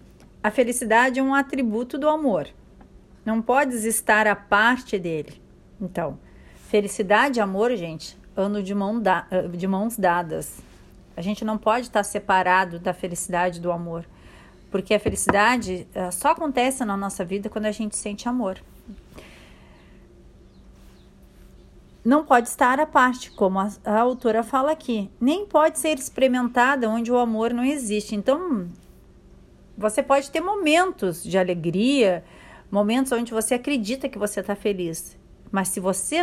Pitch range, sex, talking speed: 185-245 Hz, female, 140 wpm